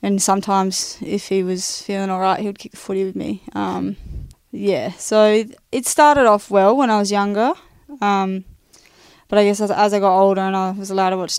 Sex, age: female, 10-29